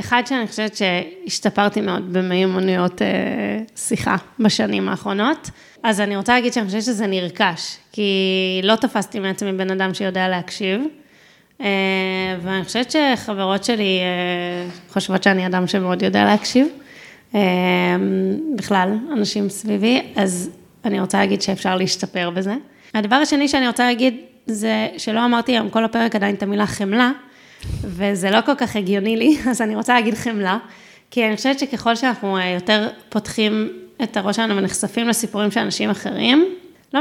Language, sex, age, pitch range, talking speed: Hebrew, female, 20-39, 195-245 Hz, 145 wpm